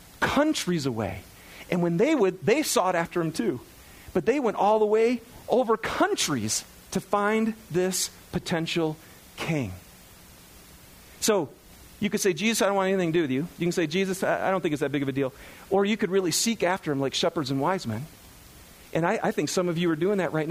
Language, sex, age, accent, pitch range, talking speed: English, male, 40-59, American, 120-185 Hz, 215 wpm